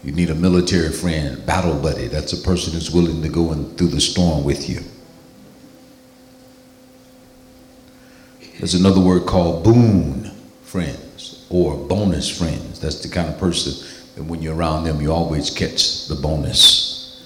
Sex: male